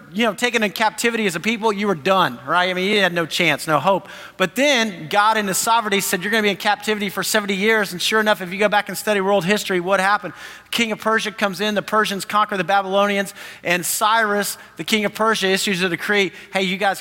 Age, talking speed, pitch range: 40-59, 250 wpm, 190-230 Hz